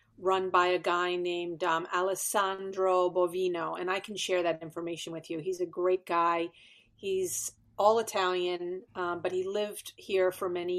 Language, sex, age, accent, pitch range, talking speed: English, female, 40-59, American, 180-235 Hz, 165 wpm